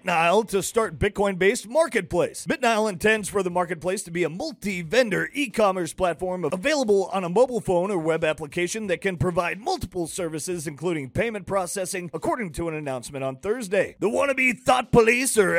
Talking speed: 175 wpm